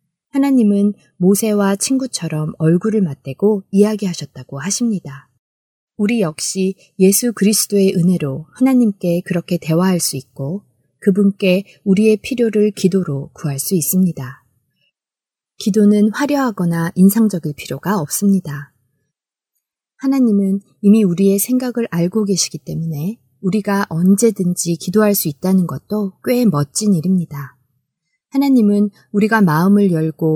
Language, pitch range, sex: Korean, 160-215 Hz, female